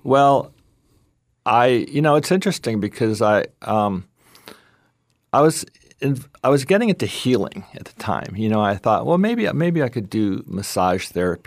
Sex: male